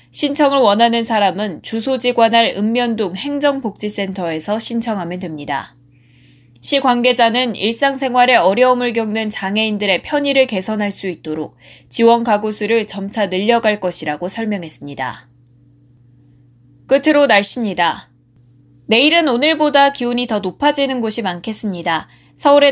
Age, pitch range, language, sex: 20-39, 185-255 Hz, Korean, female